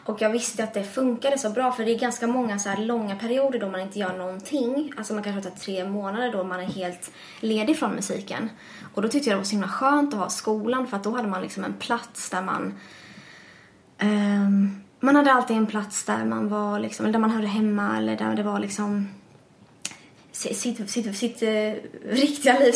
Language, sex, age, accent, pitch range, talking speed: English, female, 20-39, Swedish, 195-230 Hz, 220 wpm